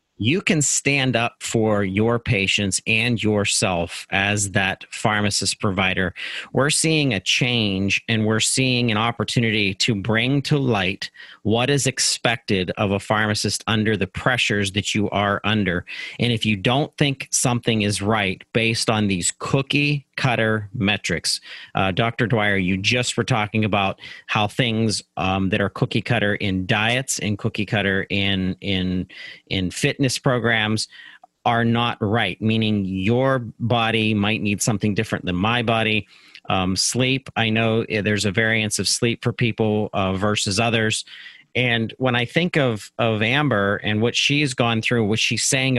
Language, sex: English, male